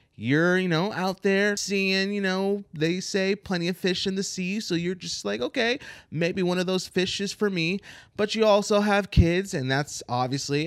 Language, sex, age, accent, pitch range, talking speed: English, male, 20-39, American, 115-155 Hz, 210 wpm